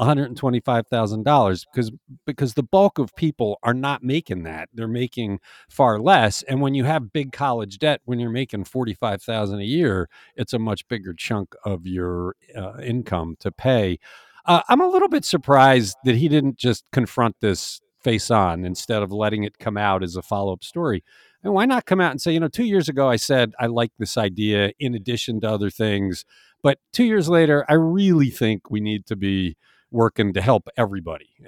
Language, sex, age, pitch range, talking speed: English, male, 50-69, 105-140 Hz, 205 wpm